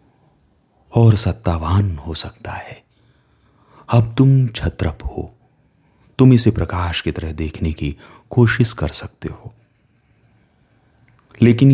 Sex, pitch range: male, 80-115 Hz